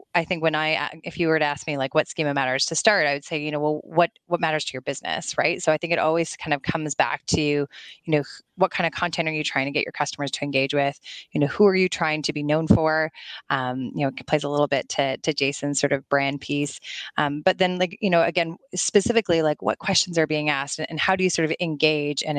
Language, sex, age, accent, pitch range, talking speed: English, female, 20-39, American, 145-170 Hz, 275 wpm